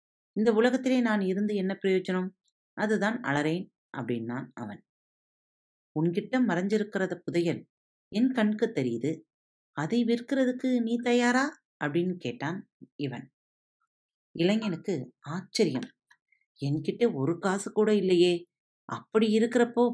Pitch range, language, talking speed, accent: 150-230 Hz, Tamil, 95 wpm, native